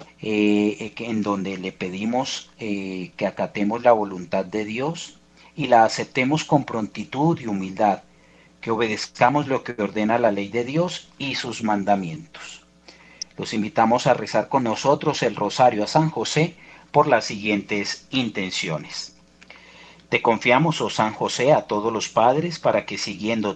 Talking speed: 150 wpm